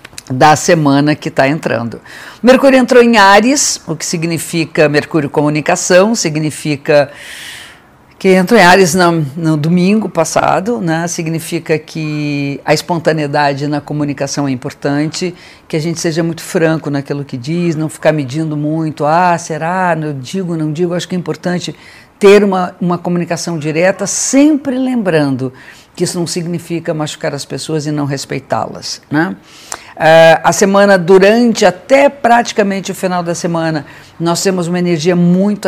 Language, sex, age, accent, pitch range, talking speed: Portuguese, female, 50-69, Brazilian, 155-185 Hz, 145 wpm